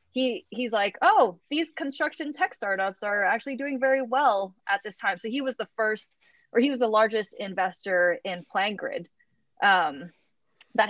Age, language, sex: 20-39, English, female